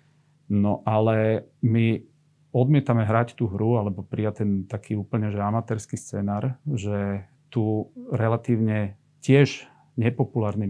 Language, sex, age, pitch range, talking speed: Slovak, male, 40-59, 110-145 Hz, 110 wpm